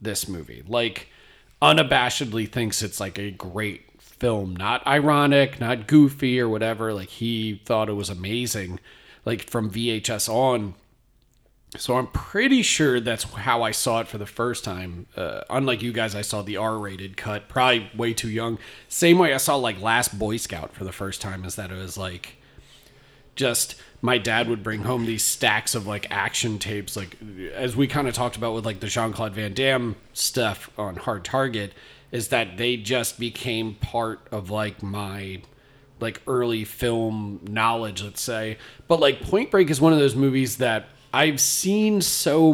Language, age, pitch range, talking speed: English, 30-49, 105-130 Hz, 180 wpm